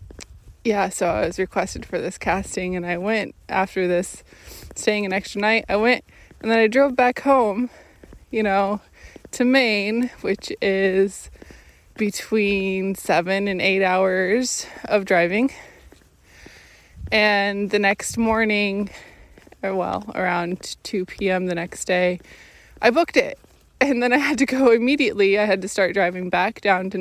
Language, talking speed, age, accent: English, 150 wpm, 20-39, American